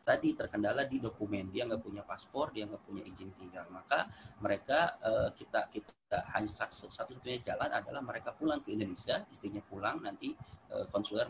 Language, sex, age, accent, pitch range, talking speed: Indonesian, male, 30-49, native, 105-135 Hz, 155 wpm